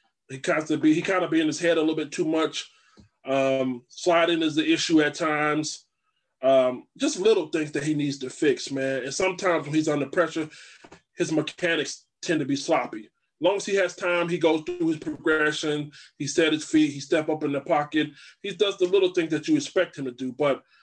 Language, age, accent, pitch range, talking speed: English, 20-39, American, 145-175 Hz, 225 wpm